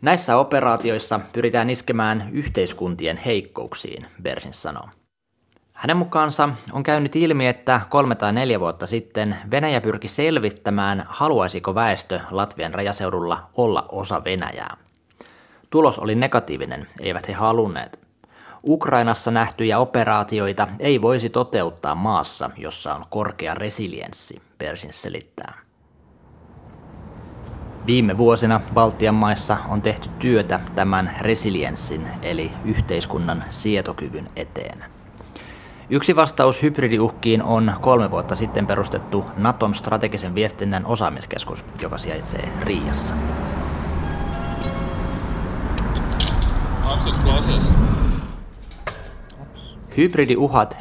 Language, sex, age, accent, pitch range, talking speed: Finnish, male, 20-39, native, 95-120 Hz, 90 wpm